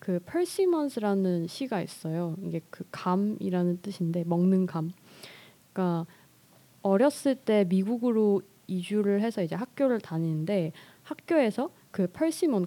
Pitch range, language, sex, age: 185-260 Hz, Korean, female, 20-39